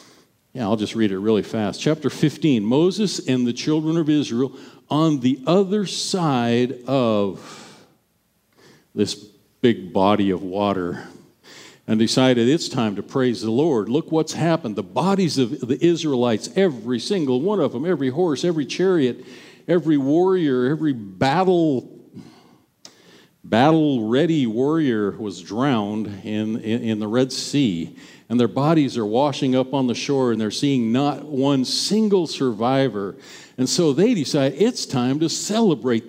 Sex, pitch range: male, 120-165 Hz